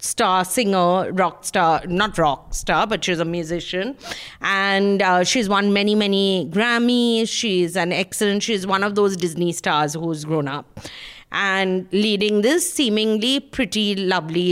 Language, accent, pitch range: English, Indian, 180-225 Hz